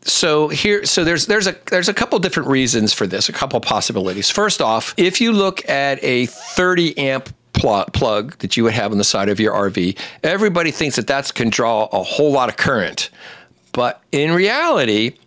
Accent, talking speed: American, 210 wpm